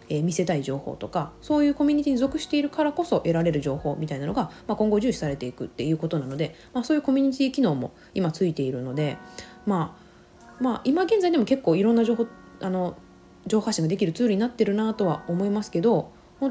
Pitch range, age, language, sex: 150-230 Hz, 20-39, Japanese, female